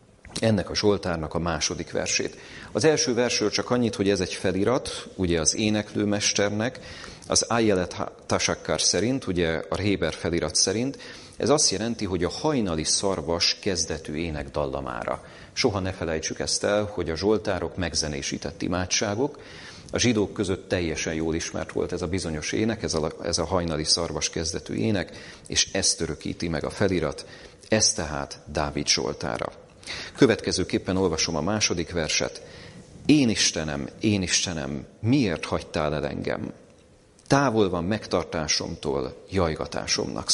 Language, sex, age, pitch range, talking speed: Hungarian, male, 40-59, 80-105 Hz, 140 wpm